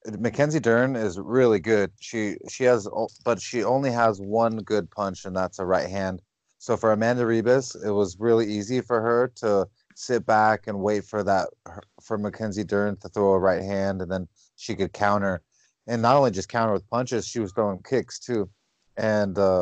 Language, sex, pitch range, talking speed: English, male, 100-115 Hz, 195 wpm